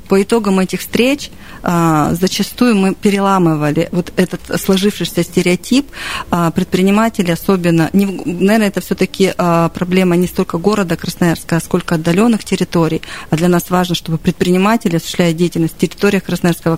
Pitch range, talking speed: 170-195 Hz, 130 wpm